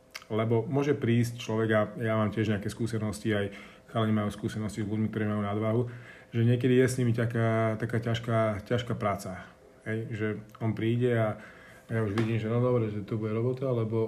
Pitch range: 110-120 Hz